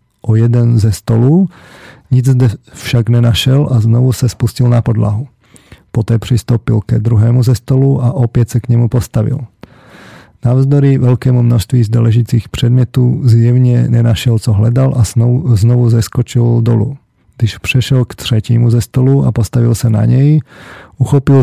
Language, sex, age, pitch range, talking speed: Slovak, male, 40-59, 115-125 Hz, 145 wpm